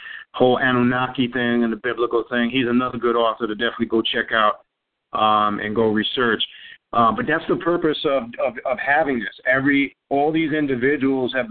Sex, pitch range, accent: male, 115-145 Hz, American